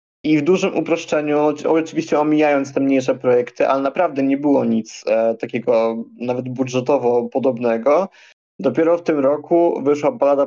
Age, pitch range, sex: 20-39, 125-145 Hz, male